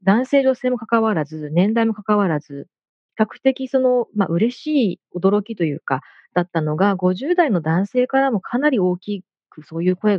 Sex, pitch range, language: female, 170-225 Hz, Japanese